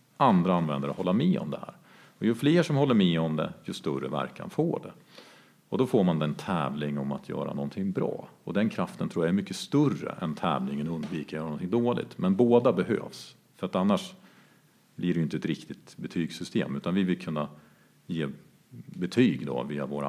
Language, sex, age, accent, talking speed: Swedish, male, 50-69, Norwegian, 200 wpm